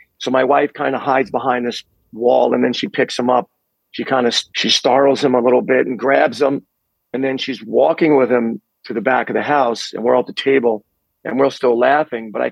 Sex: male